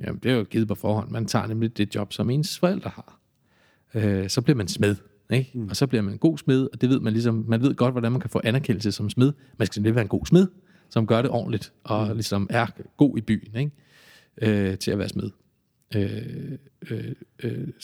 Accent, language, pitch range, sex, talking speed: native, Danish, 110-155 Hz, male, 230 wpm